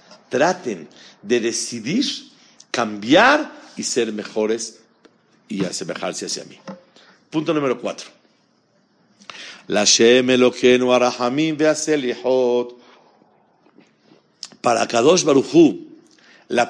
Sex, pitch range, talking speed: male, 105-140 Hz, 70 wpm